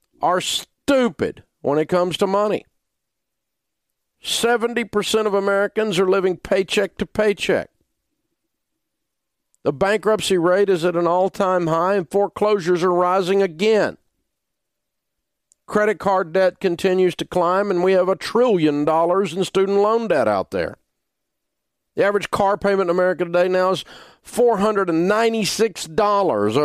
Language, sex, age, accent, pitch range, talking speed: English, male, 50-69, American, 120-205 Hz, 130 wpm